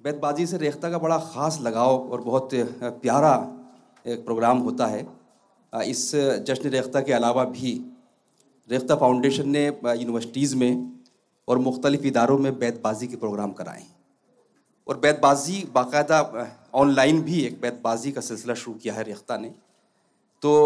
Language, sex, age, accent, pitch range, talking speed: Hindi, male, 40-59, native, 120-145 Hz, 140 wpm